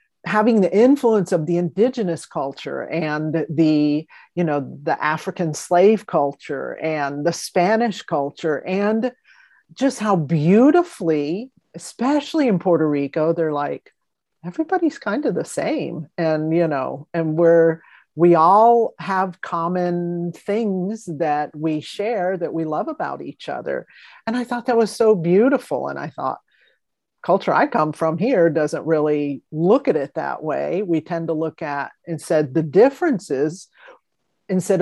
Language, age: English, 40-59